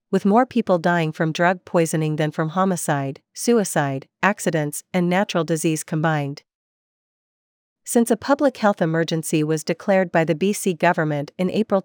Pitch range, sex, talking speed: 165-200 Hz, female, 145 wpm